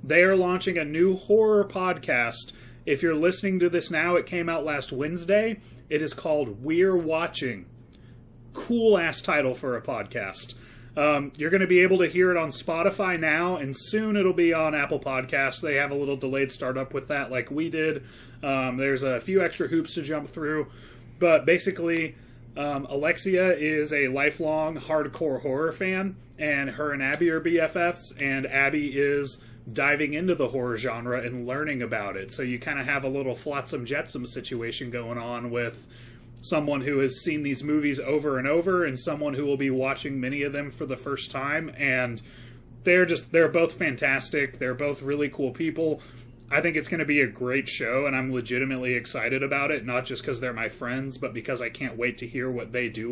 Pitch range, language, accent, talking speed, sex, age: 125-160 Hz, English, American, 195 wpm, male, 30-49